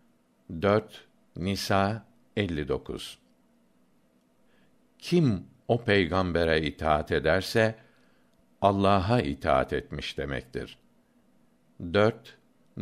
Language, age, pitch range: Turkish, 60-79, 90-105 Hz